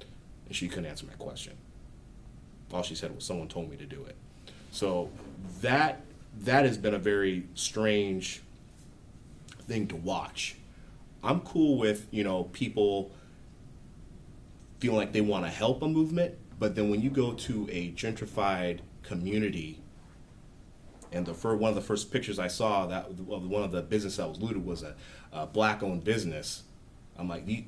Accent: American